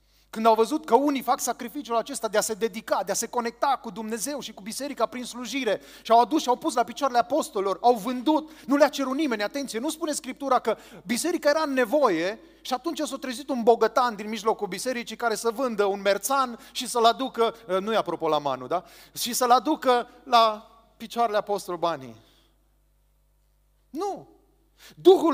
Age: 30-49